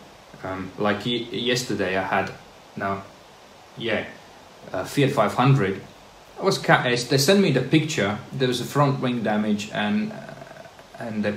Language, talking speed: English, 160 wpm